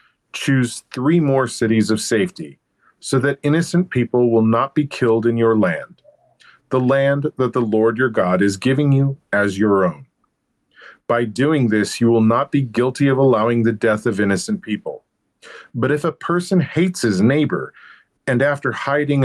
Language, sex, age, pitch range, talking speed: English, male, 40-59, 115-145 Hz, 170 wpm